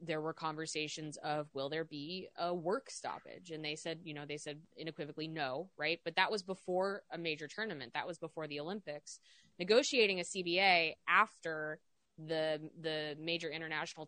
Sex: female